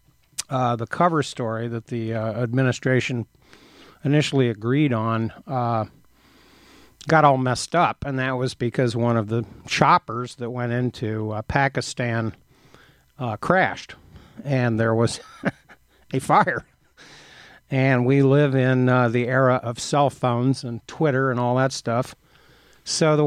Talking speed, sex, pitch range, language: 140 wpm, male, 120-145 Hz, English